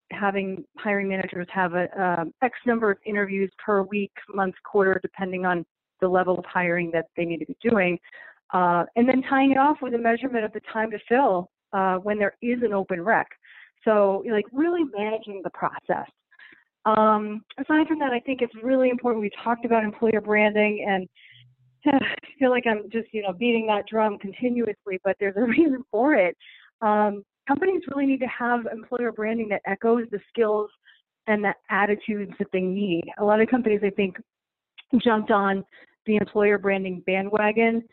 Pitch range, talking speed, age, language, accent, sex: 195-245 Hz, 180 wpm, 40-59, English, American, female